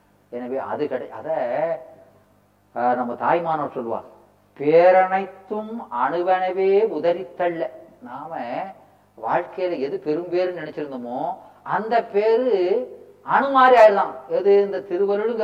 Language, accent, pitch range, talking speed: Tamil, native, 130-180 Hz, 80 wpm